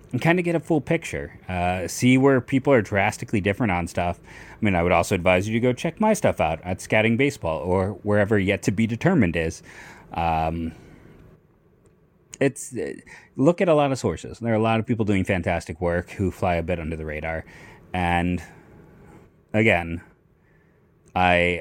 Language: English